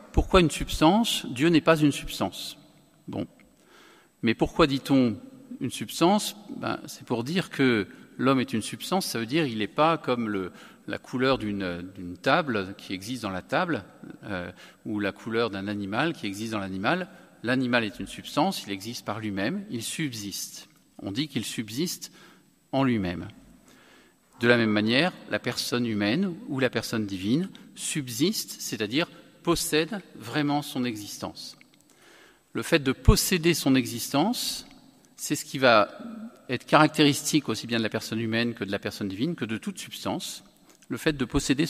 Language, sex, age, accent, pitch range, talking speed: French, male, 50-69, French, 110-160 Hz, 165 wpm